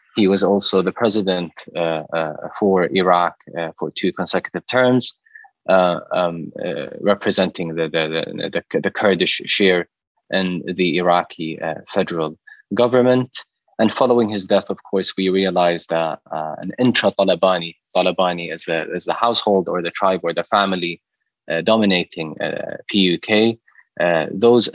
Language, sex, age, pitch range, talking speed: English, male, 20-39, 90-100 Hz, 145 wpm